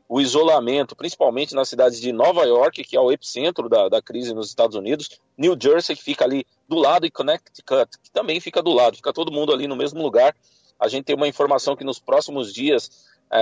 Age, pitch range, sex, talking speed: 40-59, 120-150 Hz, male, 215 wpm